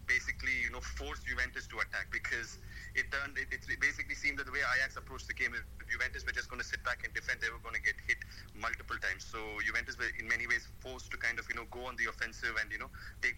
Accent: Indian